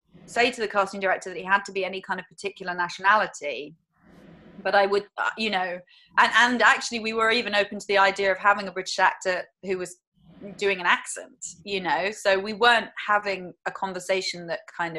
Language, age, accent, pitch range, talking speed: English, 20-39, British, 175-215 Hz, 200 wpm